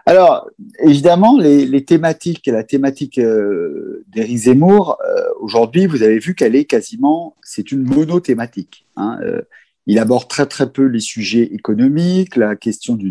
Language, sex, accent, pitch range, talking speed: French, male, French, 115-160 Hz, 155 wpm